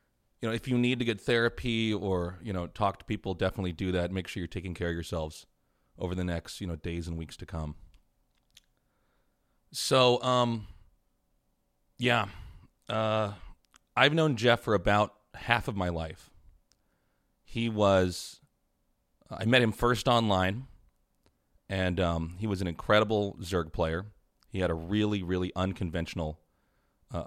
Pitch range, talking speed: 85-105 Hz, 150 wpm